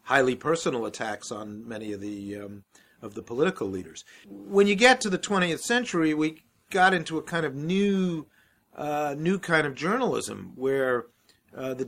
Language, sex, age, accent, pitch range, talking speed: English, male, 50-69, American, 120-160 Hz, 170 wpm